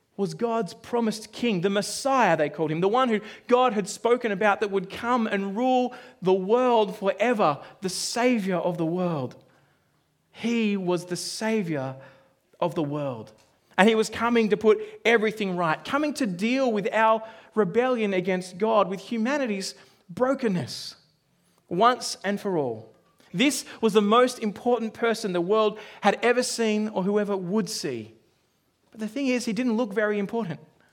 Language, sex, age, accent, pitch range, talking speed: English, male, 30-49, Australian, 190-240 Hz, 160 wpm